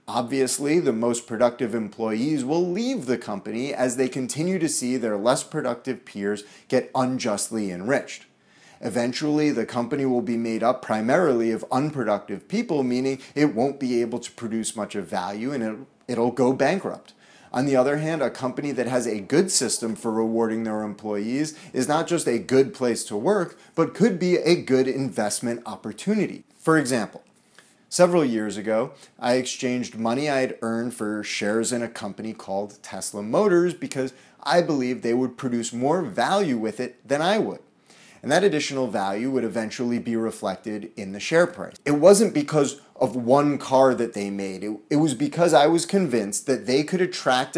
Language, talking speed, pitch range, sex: English, 175 wpm, 115-145 Hz, male